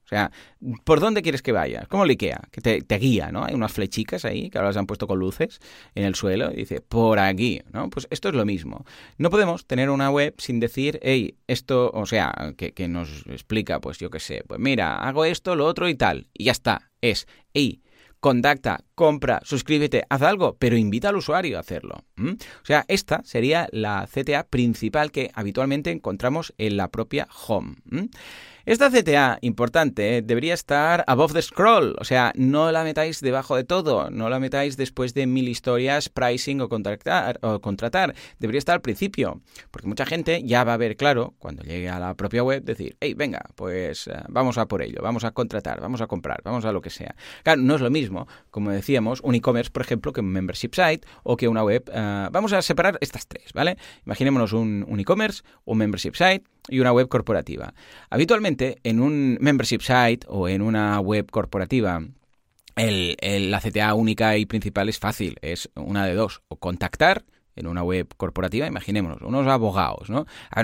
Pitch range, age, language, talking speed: 105-135 Hz, 30-49, Spanish, 200 wpm